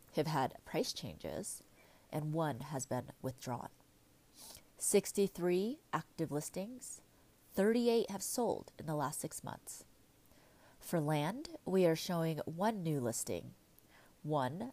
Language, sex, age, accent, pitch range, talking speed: English, female, 30-49, American, 155-190 Hz, 120 wpm